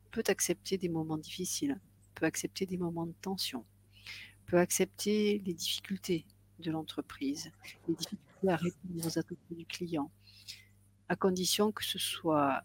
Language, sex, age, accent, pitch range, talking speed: French, female, 50-69, French, 155-185 Hz, 140 wpm